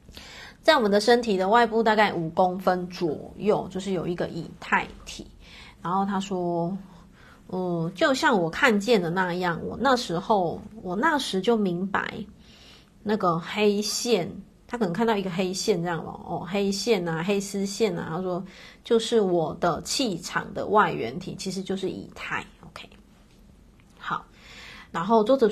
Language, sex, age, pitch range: Chinese, female, 30-49, 180-225 Hz